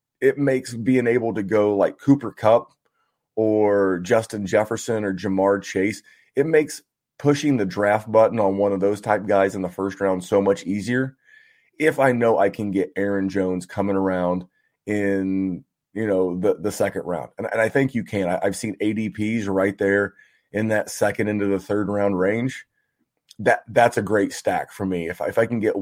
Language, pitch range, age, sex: English, 100-120 Hz, 30-49, male